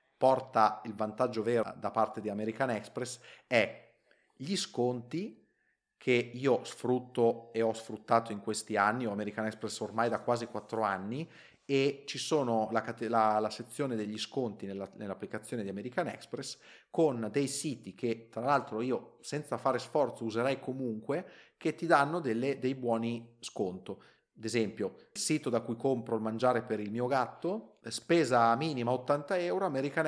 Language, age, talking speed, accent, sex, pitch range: Italian, 30-49, 160 wpm, native, male, 110-135 Hz